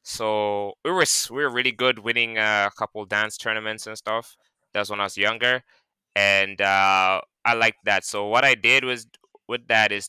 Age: 20-39